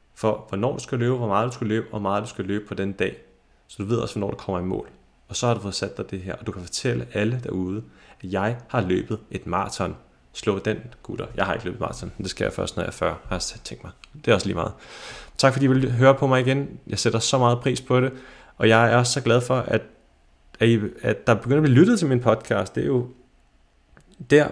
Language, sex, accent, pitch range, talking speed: Danish, male, native, 105-125 Hz, 265 wpm